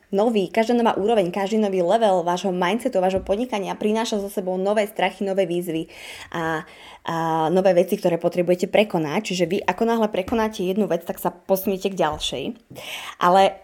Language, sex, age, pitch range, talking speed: Slovak, female, 20-39, 185-220 Hz, 165 wpm